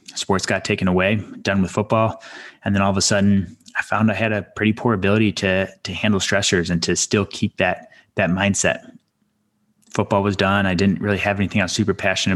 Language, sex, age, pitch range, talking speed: English, male, 20-39, 90-105 Hz, 215 wpm